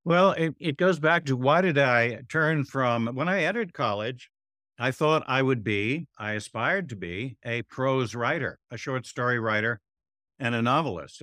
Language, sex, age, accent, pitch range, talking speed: English, male, 60-79, American, 115-145 Hz, 180 wpm